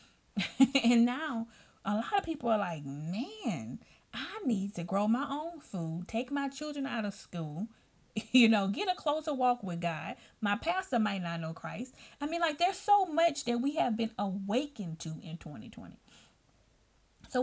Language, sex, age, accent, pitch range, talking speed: English, female, 30-49, American, 215-275 Hz, 175 wpm